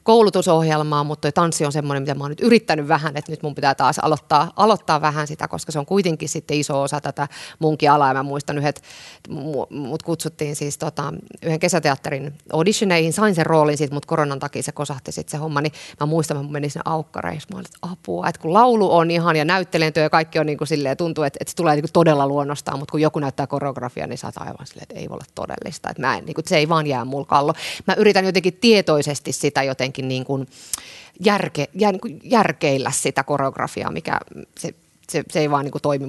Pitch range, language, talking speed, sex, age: 145-180 Hz, Finnish, 215 wpm, female, 30-49